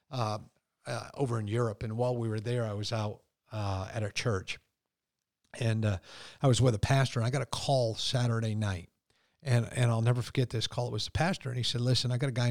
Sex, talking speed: male, 240 wpm